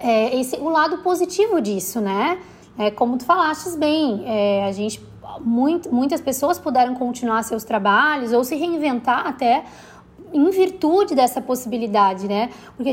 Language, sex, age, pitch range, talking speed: Vietnamese, female, 20-39, 230-295 Hz, 145 wpm